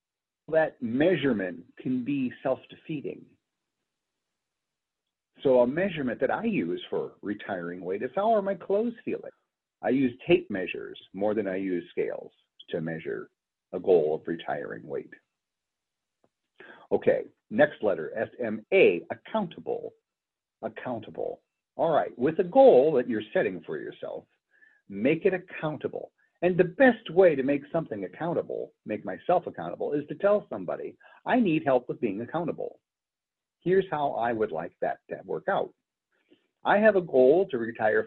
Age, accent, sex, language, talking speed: 50-69, American, male, English, 145 wpm